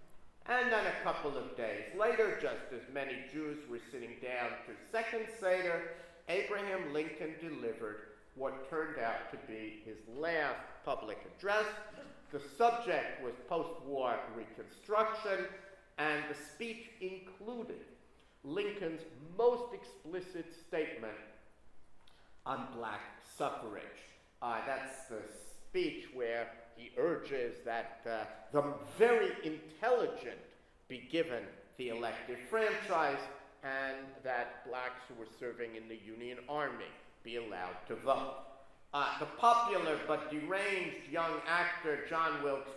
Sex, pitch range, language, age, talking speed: male, 120-190 Hz, English, 50-69, 120 wpm